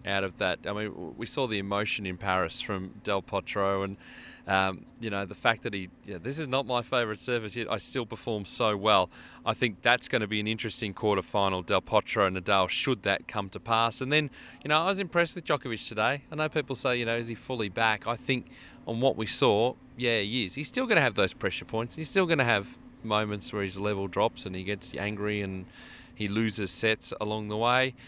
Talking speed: 235 wpm